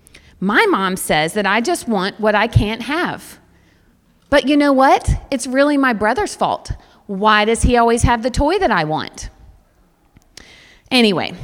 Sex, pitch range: female, 190-260 Hz